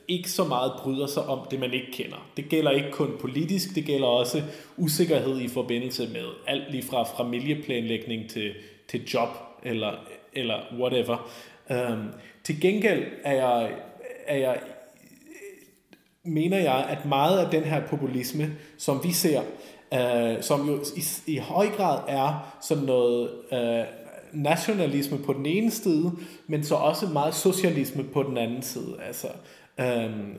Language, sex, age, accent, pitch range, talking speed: Danish, male, 30-49, native, 125-165 Hz, 150 wpm